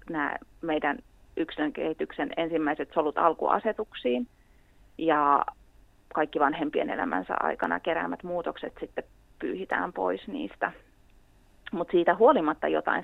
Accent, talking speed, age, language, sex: Finnish, 100 wpm, 30-49, English, female